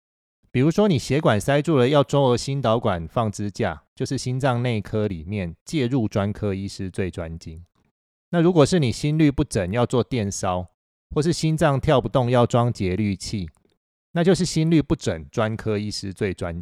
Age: 30-49